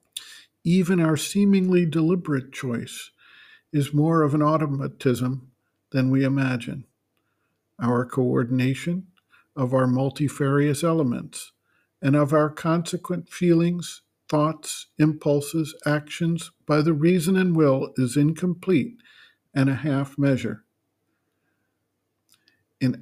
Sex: male